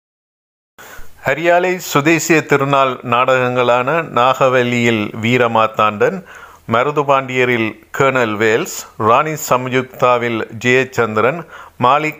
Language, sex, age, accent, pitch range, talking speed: Tamil, male, 50-69, native, 120-140 Hz, 65 wpm